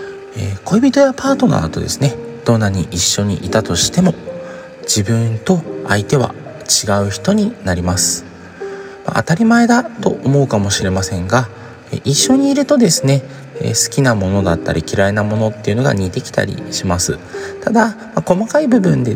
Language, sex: Japanese, male